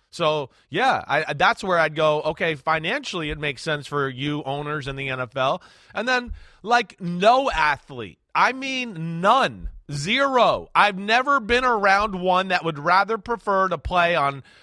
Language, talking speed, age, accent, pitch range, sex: English, 155 wpm, 30-49, American, 165-210 Hz, male